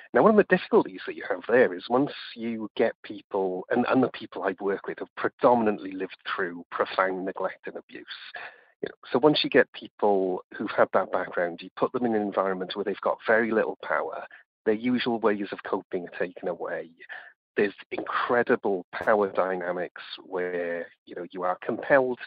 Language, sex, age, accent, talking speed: English, male, 40-59, British, 190 wpm